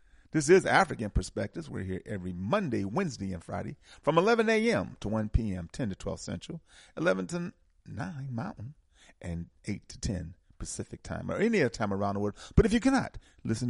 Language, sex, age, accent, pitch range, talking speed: English, male, 40-59, American, 85-110 Hz, 190 wpm